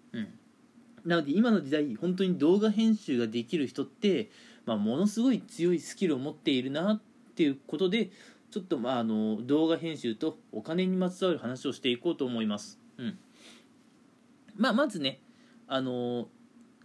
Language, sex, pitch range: Japanese, male, 170-245 Hz